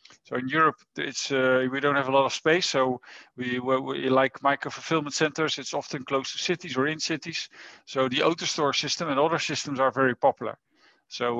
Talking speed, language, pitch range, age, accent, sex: 190 wpm, English, 130-155 Hz, 50-69, Dutch, male